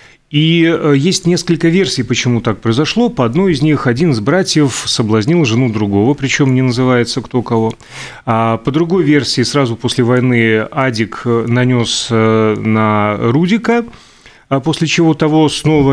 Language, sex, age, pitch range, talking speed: Russian, male, 30-49, 115-150 Hz, 140 wpm